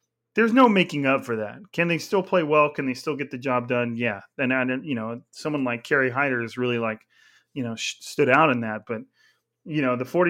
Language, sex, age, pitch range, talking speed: English, male, 30-49, 120-150 Hz, 225 wpm